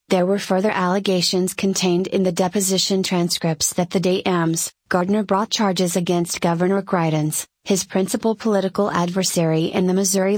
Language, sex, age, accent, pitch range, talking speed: English, female, 30-49, American, 180-200 Hz, 150 wpm